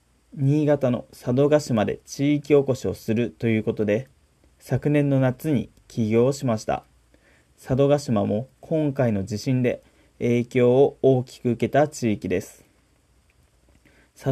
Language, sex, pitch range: Japanese, male, 110-145 Hz